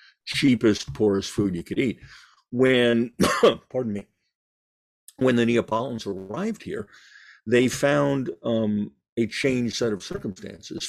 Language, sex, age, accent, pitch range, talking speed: English, male, 50-69, American, 100-130 Hz, 120 wpm